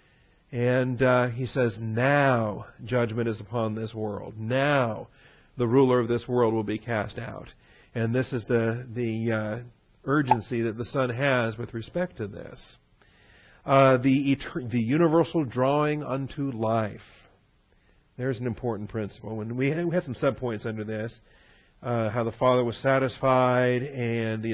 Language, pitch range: English, 115-135 Hz